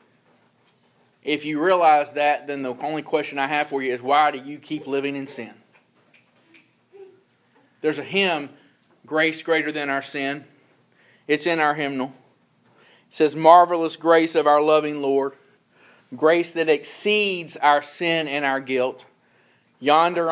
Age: 40-59